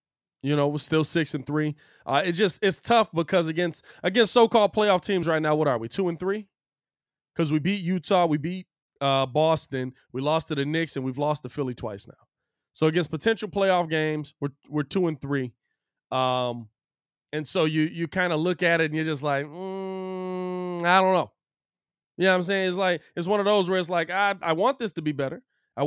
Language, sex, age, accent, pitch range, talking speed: English, male, 20-39, American, 145-175 Hz, 225 wpm